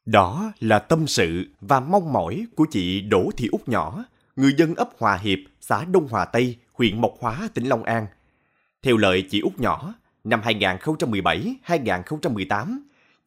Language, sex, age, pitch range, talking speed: Vietnamese, male, 20-39, 105-160 Hz, 160 wpm